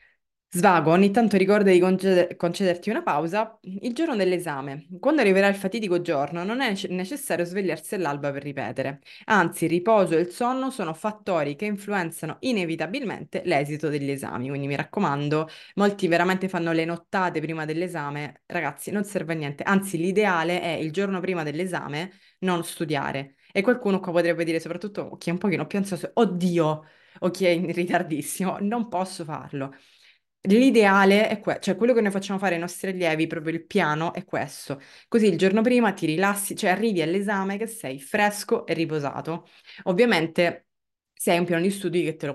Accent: native